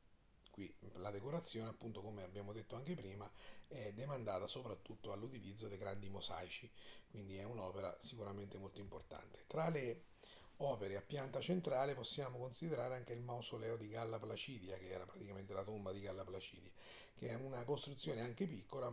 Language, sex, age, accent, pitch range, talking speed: Italian, male, 40-59, native, 100-130 Hz, 155 wpm